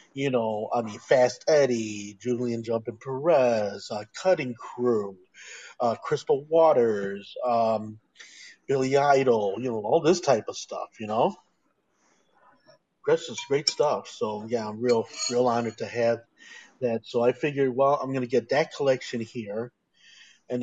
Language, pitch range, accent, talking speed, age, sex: English, 115-130 Hz, American, 150 wpm, 40-59, male